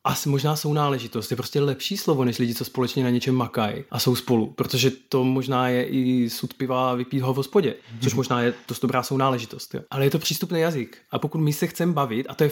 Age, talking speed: 20-39, 230 wpm